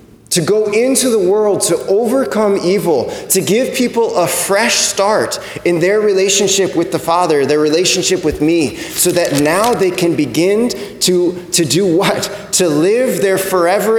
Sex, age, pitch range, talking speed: male, 30-49, 175-235 Hz, 165 wpm